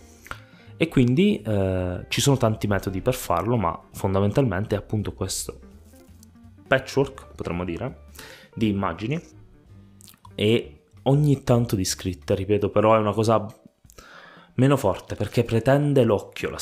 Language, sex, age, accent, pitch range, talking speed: Italian, male, 20-39, native, 100-130 Hz, 125 wpm